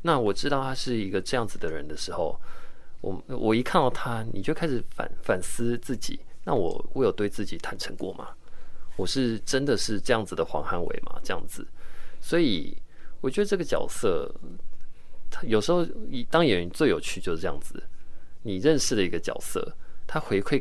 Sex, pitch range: male, 100-135 Hz